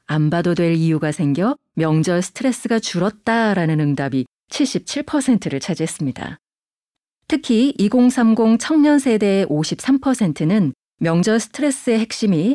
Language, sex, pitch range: Korean, female, 165-245 Hz